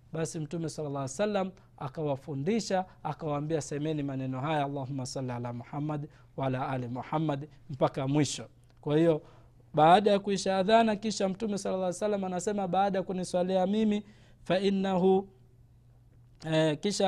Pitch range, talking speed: 145-195 Hz, 140 wpm